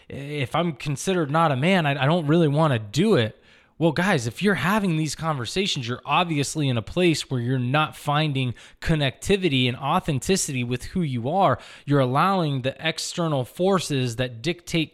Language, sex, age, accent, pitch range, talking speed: English, male, 20-39, American, 125-170 Hz, 175 wpm